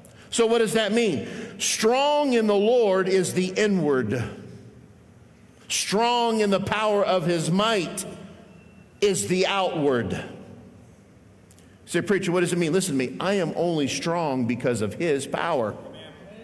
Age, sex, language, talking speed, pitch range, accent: 50-69, male, English, 140 wpm, 185-250 Hz, American